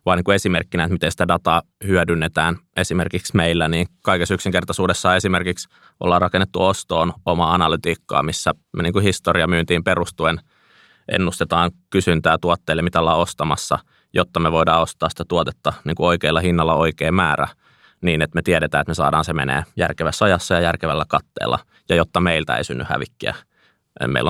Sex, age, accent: male, 20-39, native